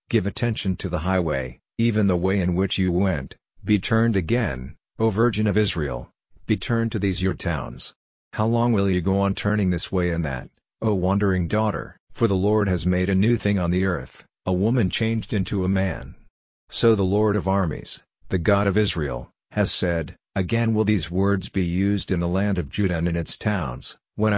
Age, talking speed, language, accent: 50-69, 205 wpm, English, American